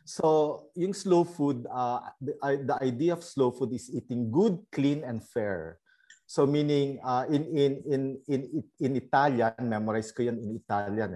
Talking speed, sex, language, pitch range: 165 wpm, male, Filipino, 120-155 Hz